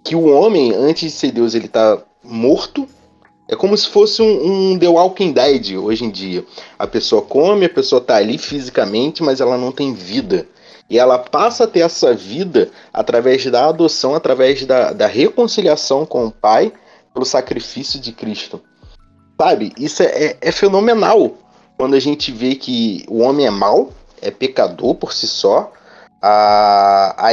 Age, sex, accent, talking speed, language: 30-49, male, Brazilian, 170 wpm, Portuguese